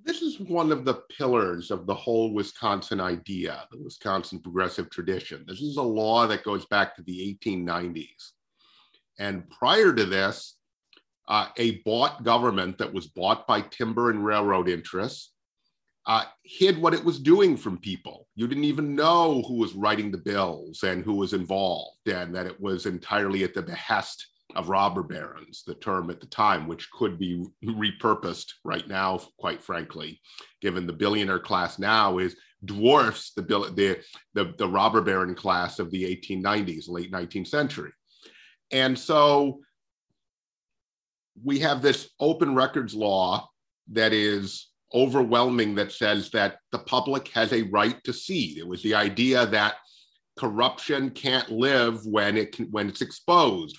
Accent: American